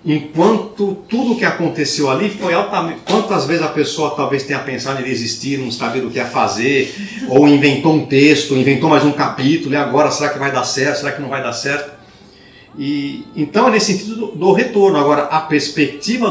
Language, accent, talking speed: Portuguese, Brazilian, 200 wpm